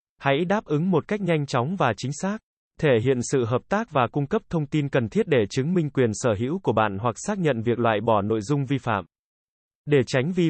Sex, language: male, Vietnamese